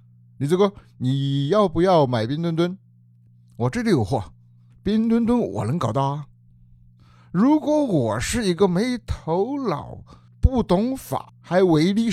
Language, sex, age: Chinese, male, 50-69